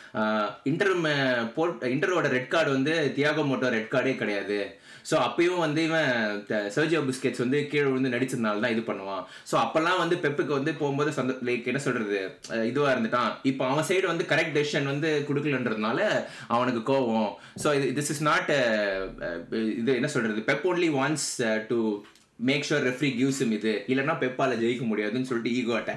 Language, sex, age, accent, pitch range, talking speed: Tamil, male, 20-39, native, 115-145 Hz, 90 wpm